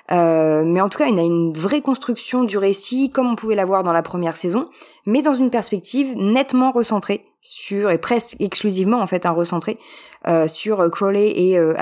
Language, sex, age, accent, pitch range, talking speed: French, female, 20-39, French, 180-255 Hz, 210 wpm